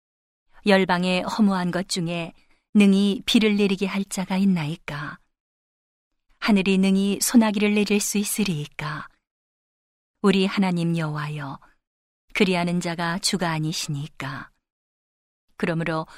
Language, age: Korean, 40-59